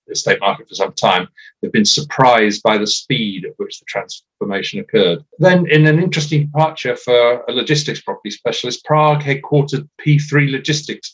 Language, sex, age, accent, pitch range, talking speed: English, male, 40-59, British, 110-145 Hz, 160 wpm